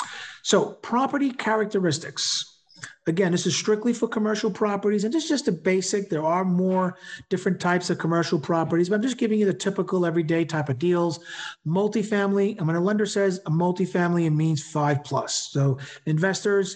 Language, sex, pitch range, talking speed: English, male, 160-205 Hz, 170 wpm